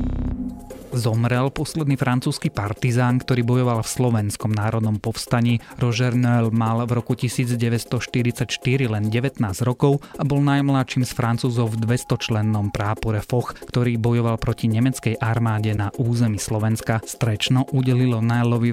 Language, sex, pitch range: Slovak, male, 110-130 Hz